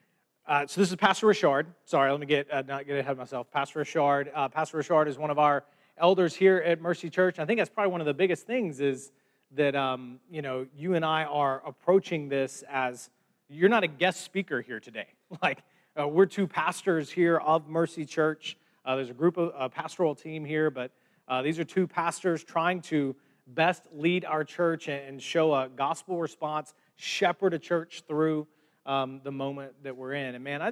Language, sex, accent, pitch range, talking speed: English, male, American, 140-170 Hz, 210 wpm